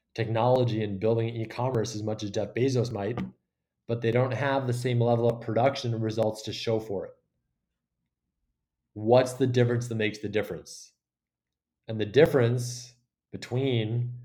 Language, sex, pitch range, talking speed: English, male, 100-120 Hz, 150 wpm